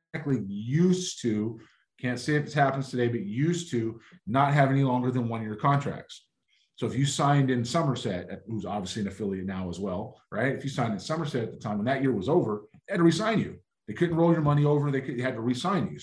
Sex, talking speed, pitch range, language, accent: male, 240 wpm, 110-140 Hz, English, American